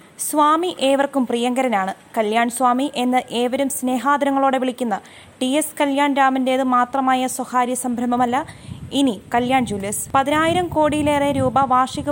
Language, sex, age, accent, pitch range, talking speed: Malayalam, female, 20-39, native, 245-280 Hz, 115 wpm